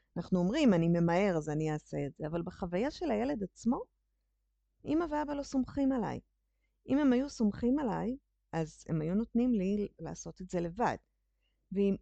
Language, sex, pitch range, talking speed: Hebrew, female, 170-240 Hz, 170 wpm